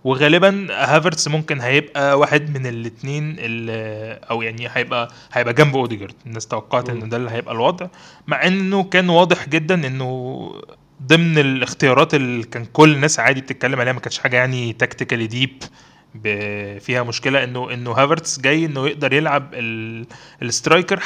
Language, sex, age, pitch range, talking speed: Arabic, male, 20-39, 120-155 Hz, 145 wpm